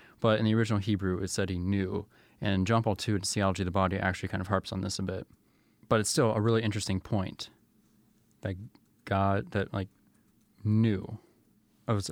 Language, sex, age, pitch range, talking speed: English, male, 20-39, 95-110 Hz, 195 wpm